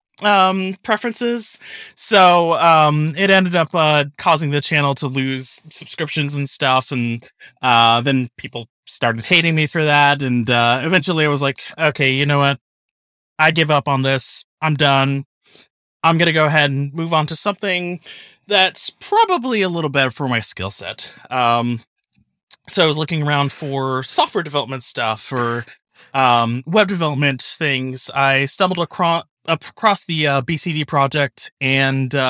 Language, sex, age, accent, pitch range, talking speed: English, male, 20-39, American, 135-170 Hz, 160 wpm